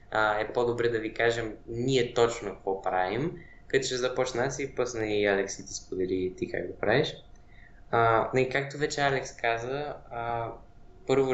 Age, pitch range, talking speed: 20-39, 110-130 Hz, 160 wpm